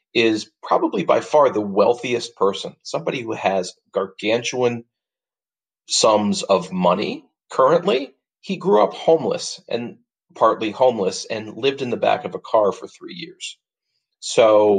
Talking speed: 140 wpm